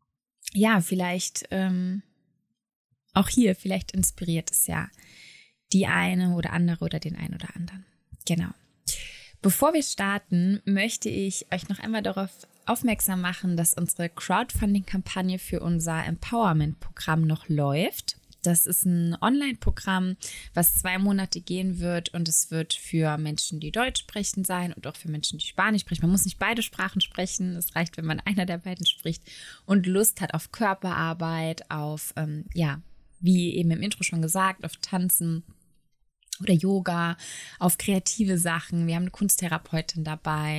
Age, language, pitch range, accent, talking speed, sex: 20-39, German, 165-195 Hz, German, 150 wpm, female